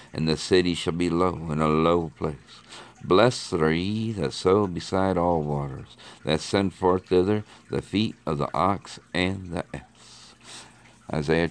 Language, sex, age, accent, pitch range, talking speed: English, male, 60-79, American, 80-95 Hz, 160 wpm